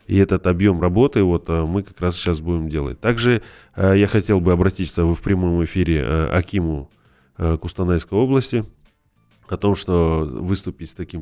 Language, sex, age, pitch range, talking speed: Russian, male, 20-39, 80-95 Hz, 150 wpm